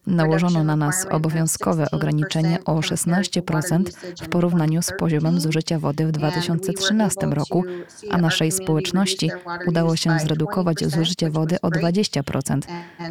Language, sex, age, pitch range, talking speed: Polish, female, 20-39, 155-185 Hz, 120 wpm